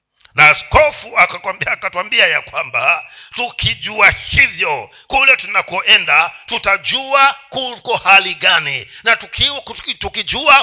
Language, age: Swahili, 50-69